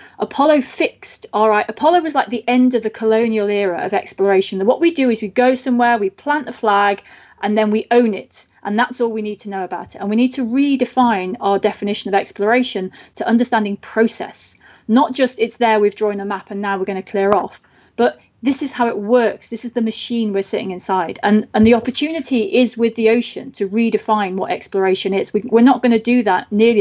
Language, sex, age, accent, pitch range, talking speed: English, female, 30-49, British, 205-245 Hz, 225 wpm